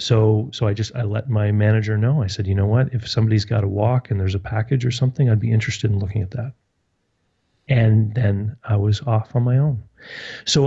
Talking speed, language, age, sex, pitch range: 230 wpm, English, 30-49, male, 100-120 Hz